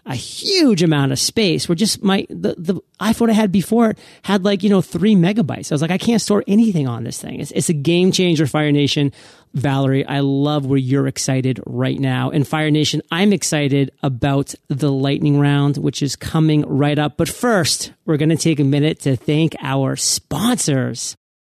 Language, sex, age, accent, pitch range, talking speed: English, male, 40-59, American, 150-215 Hz, 200 wpm